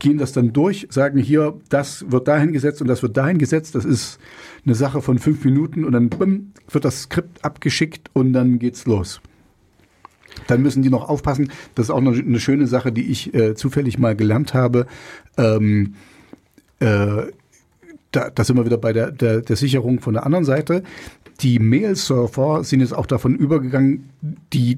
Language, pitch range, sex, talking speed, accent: German, 120-140 Hz, male, 185 wpm, German